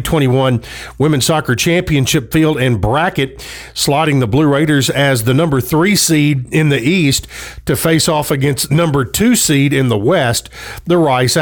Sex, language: male, English